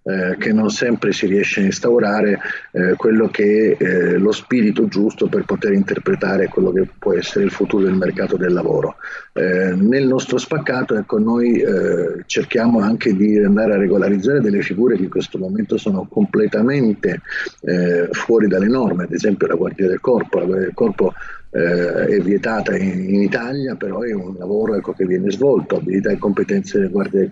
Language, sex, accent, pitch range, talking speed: Italian, male, native, 95-145 Hz, 180 wpm